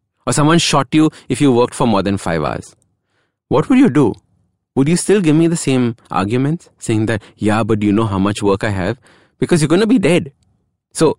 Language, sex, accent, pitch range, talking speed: English, male, Indian, 100-150 Hz, 225 wpm